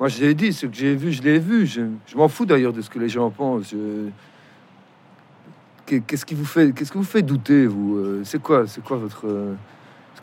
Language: French